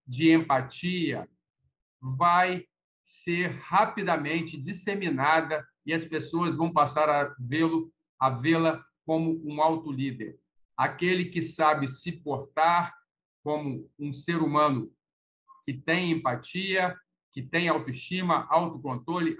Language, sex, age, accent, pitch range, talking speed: Portuguese, male, 50-69, Brazilian, 140-175 Hz, 110 wpm